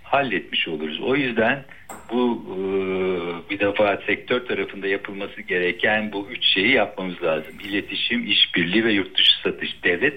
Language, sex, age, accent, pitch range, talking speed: Turkish, male, 60-79, native, 90-110 Hz, 140 wpm